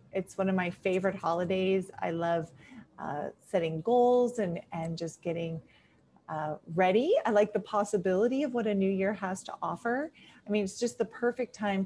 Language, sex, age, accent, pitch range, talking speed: English, female, 30-49, American, 180-235 Hz, 180 wpm